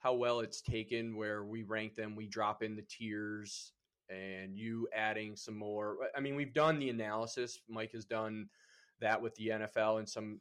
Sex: male